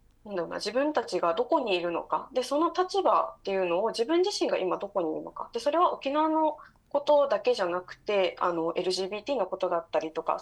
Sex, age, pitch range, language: female, 20-39, 180-265 Hz, Japanese